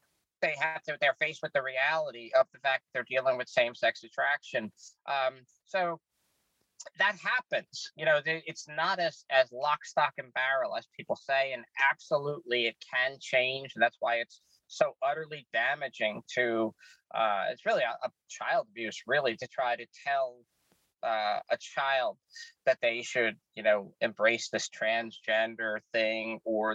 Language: English